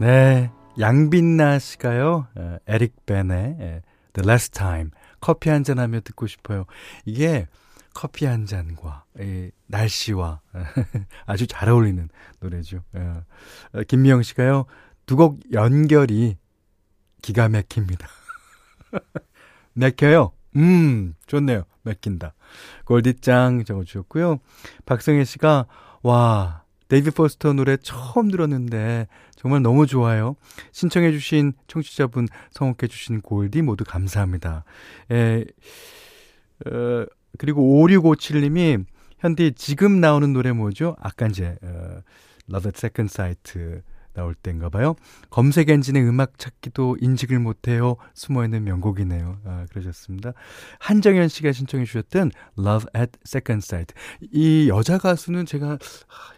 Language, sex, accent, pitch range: Korean, male, native, 95-145 Hz